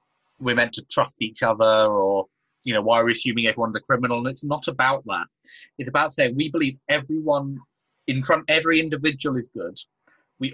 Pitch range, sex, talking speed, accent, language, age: 120-150 Hz, male, 195 wpm, British, English, 30-49